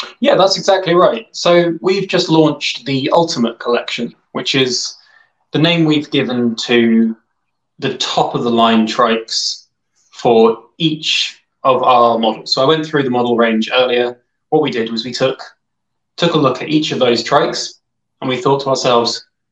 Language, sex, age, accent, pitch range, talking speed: English, male, 20-39, British, 115-145 Hz, 170 wpm